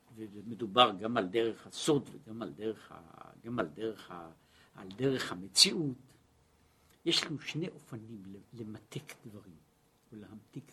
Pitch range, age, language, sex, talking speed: 115-185 Hz, 60-79, Hebrew, male, 130 wpm